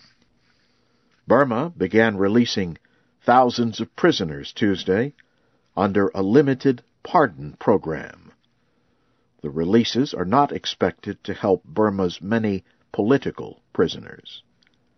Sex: male